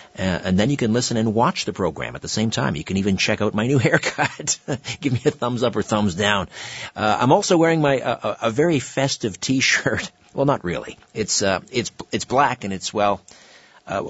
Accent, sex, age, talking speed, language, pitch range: American, male, 50-69, 225 wpm, English, 90-120 Hz